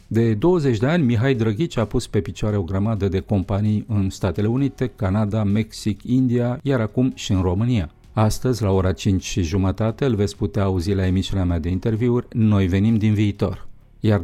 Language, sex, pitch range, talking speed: Romanian, male, 95-115 Hz, 190 wpm